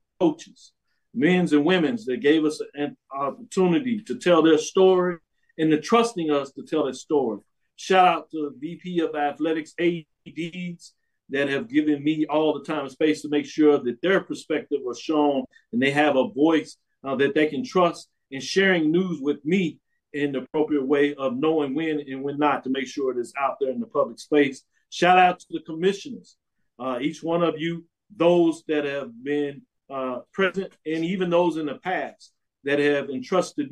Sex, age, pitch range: male, 50-69, 135-165 Hz